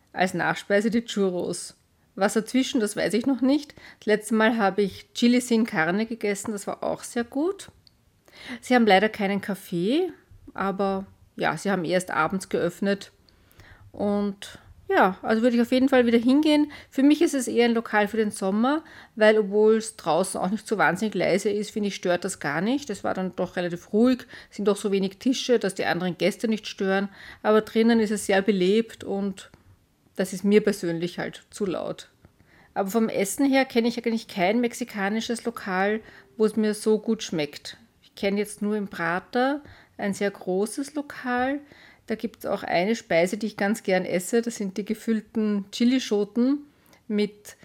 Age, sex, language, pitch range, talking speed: 40-59, female, German, 195-235 Hz, 185 wpm